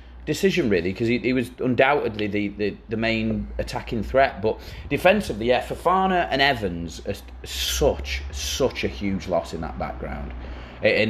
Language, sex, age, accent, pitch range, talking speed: English, male, 30-49, British, 105-150 Hz, 150 wpm